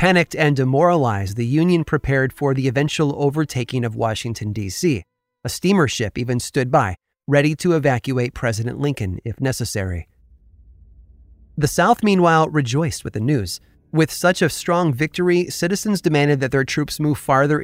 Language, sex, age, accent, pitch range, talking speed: English, male, 30-49, American, 110-155 Hz, 155 wpm